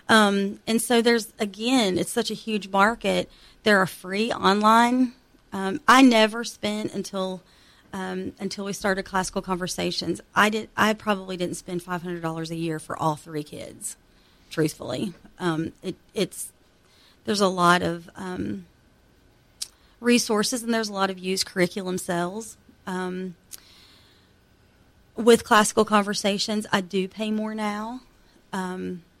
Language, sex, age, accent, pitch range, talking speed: English, female, 30-49, American, 170-205 Hz, 135 wpm